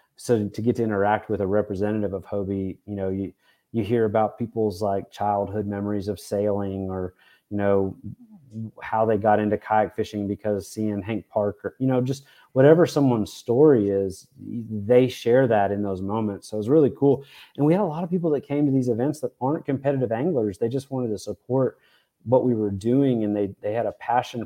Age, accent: 30-49, American